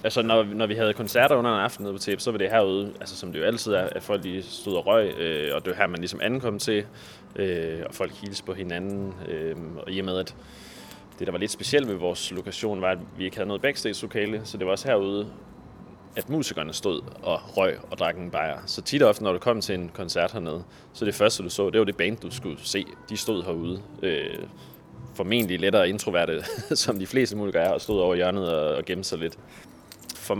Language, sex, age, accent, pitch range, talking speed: Danish, male, 20-39, native, 95-115 Hz, 245 wpm